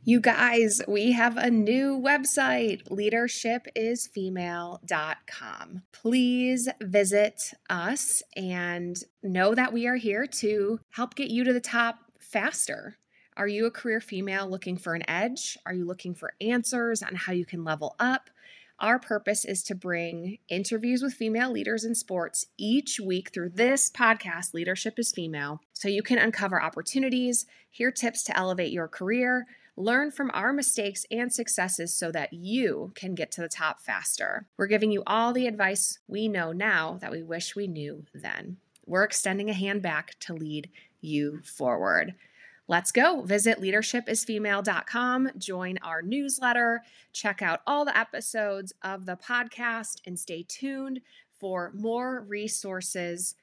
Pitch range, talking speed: 180-240 Hz, 150 wpm